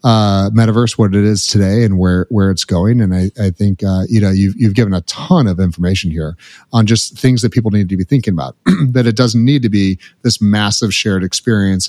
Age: 30-49